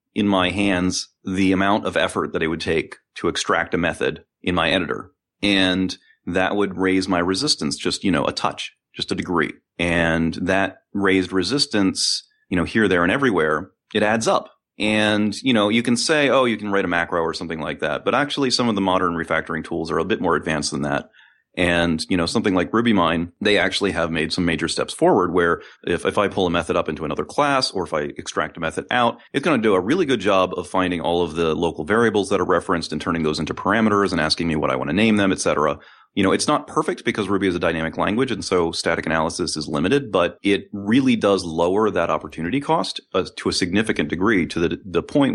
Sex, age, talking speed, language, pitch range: male, 30-49, 230 wpm, English, 85-105 Hz